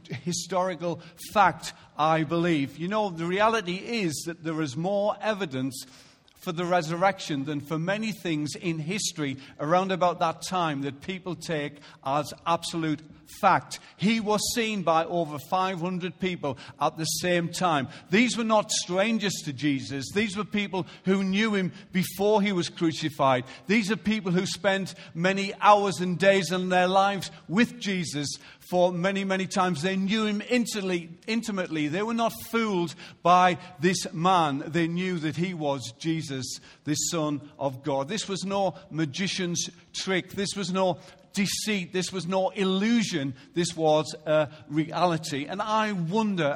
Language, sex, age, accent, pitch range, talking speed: English, male, 50-69, British, 155-195 Hz, 155 wpm